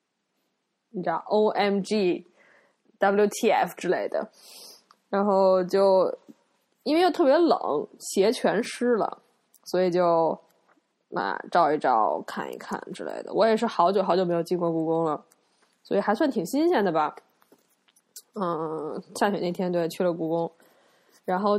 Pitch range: 180-230 Hz